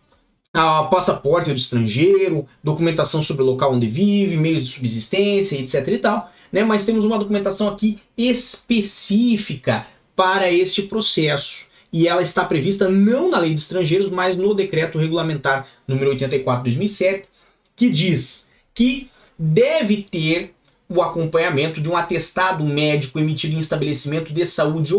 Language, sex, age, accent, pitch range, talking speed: Portuguese, male, 20-39, Brazilian, 145-200 Hz, 140 wpm